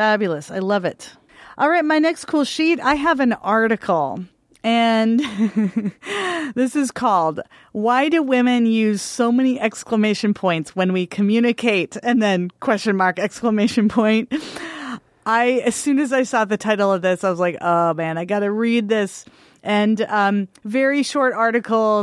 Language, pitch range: English, 210-265 Hz